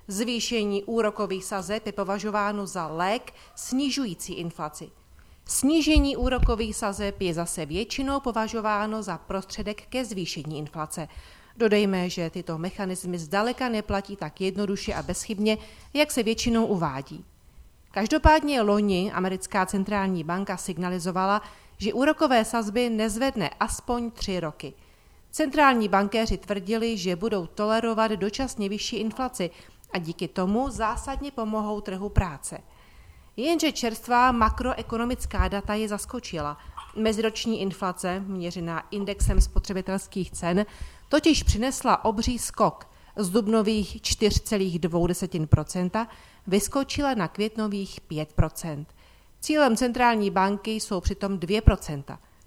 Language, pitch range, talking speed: Czech, 185-230 Hz, 105 wpm